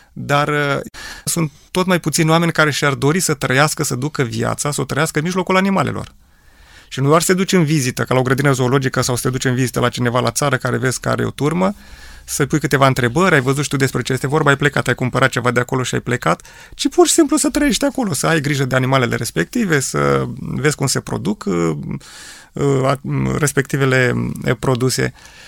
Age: 30-49